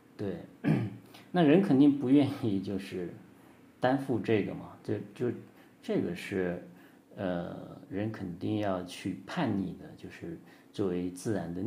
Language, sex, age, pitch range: Chinese, male, 50-69, 95-120 Hz